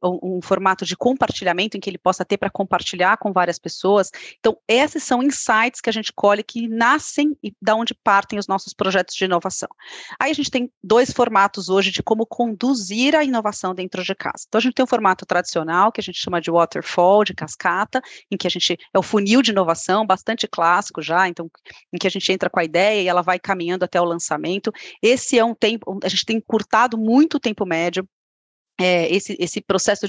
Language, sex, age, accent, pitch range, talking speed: Portuguese, female, 30-49, Brazilian, 185-225 Hz, 215 wpm